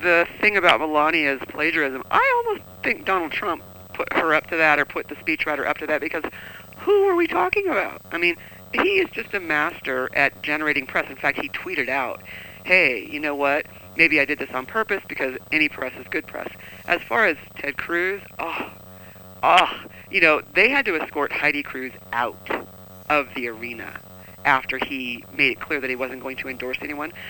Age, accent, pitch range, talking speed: 40-59, American, 125-170 Hz, 200 wpm